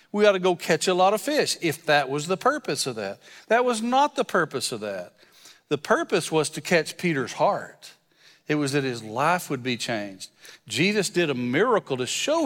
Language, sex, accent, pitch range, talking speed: English, male, American, 135-175 Hz, 210 wpm